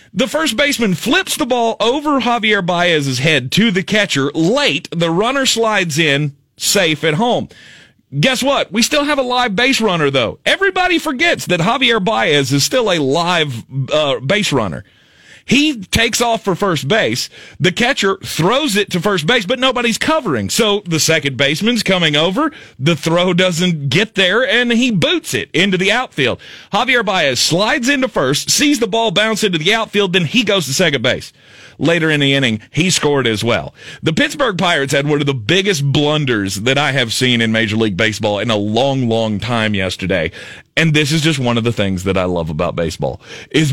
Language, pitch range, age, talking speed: English, 135-215 Hz, 40-59, 190 wpm